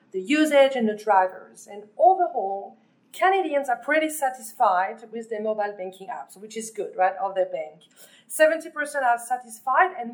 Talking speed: 160 wpm